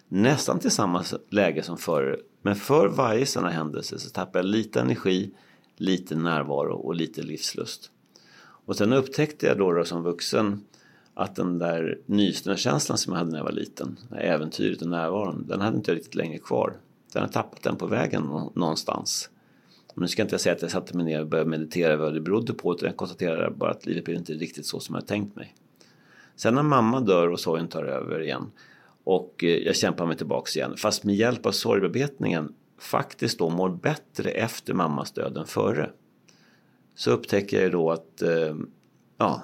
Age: 30-49